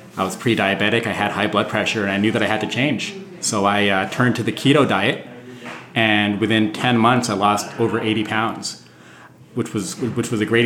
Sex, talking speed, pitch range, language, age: male, 220 wpm, 105-125 Hz, English, 30-49